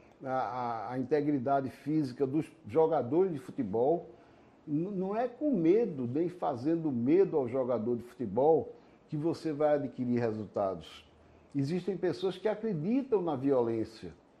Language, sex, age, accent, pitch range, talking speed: Portuguese, male, 60-79, Brazilian, 130-180 Hz, 125 wpm